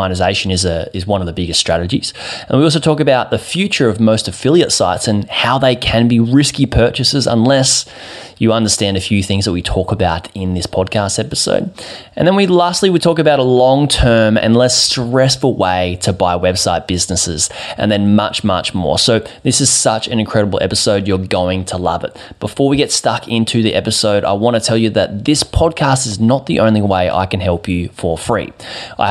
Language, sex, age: English, male, 20-39